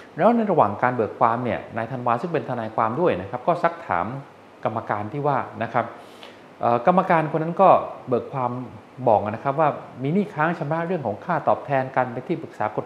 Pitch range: 110-150 Hz